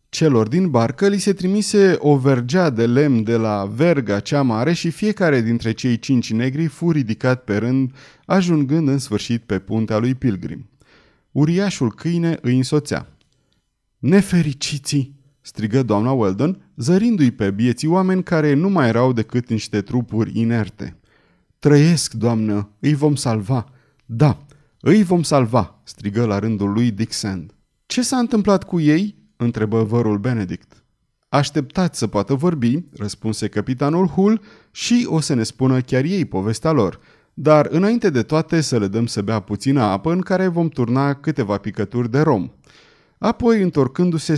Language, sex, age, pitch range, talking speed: Romanian, male, 30-49, 115-165 Hz, 150 wpm